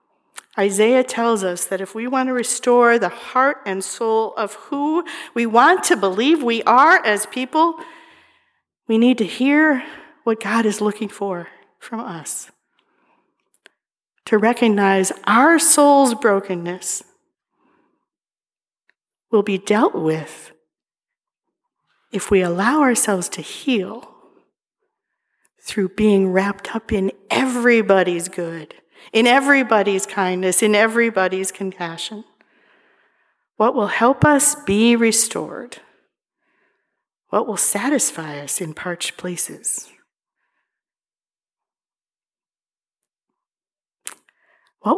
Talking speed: 100 wpm